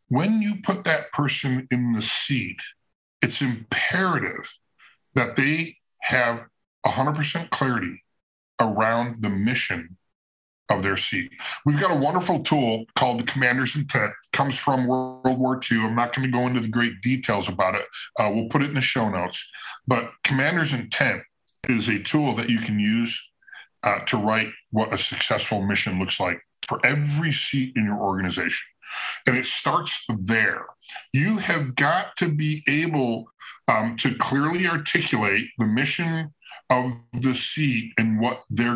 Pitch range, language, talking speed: 110-140 Hz, English, 155 wpm